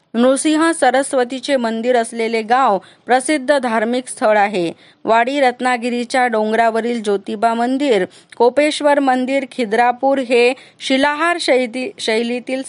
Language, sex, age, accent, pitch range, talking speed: Marathi, female, 20-39, native, 225-270 Hz, 65 wpm